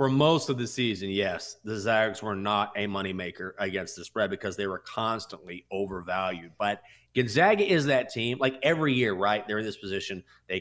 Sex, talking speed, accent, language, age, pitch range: male, 190 wpm, American, English, 30-49, 105-140 Hz